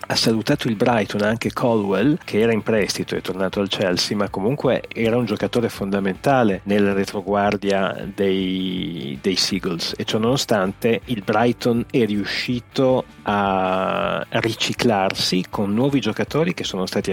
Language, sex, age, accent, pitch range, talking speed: Italian, male, 30-49, native, 100-120 Hz, 145 wpm